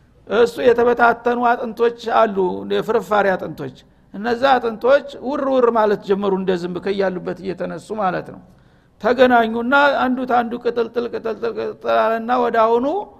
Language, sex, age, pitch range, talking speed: Amharic, male, 60-79, 205-245 Hz, 105 wpm